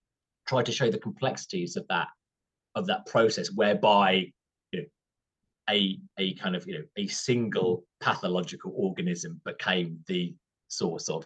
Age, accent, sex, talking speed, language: 30-49, British, male, 145 wpm, English